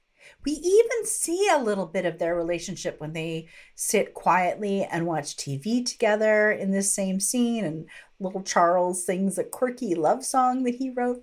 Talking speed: 170 wpm